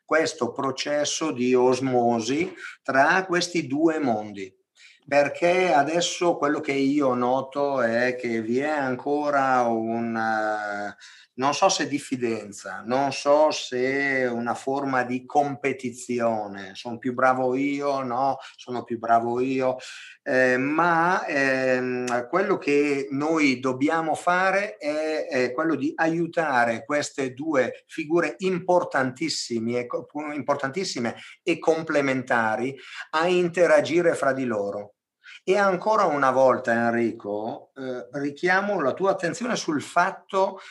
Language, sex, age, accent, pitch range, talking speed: Italian, male, 50-69, native, 125-165 Hz, 115 wpm